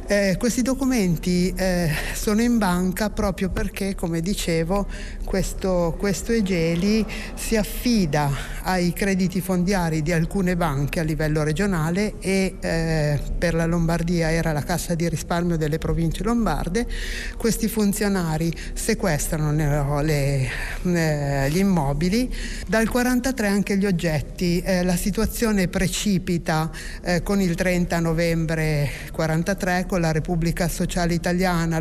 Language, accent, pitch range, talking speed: Italian, native, 165-200 Hz, 120 wpm